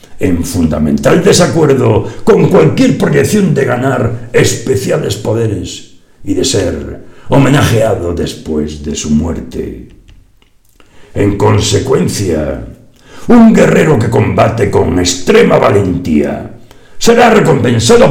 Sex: male